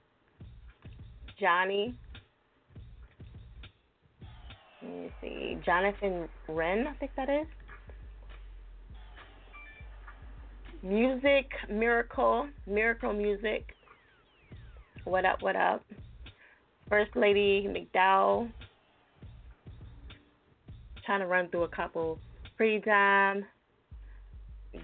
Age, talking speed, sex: 20-39, 70 wpm, female